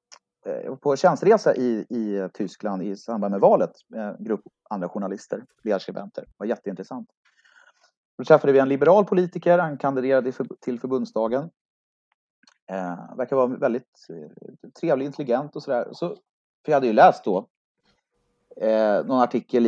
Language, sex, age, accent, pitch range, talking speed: Swedish, male, 30-49, native, 115-180 Hz, 145 wpm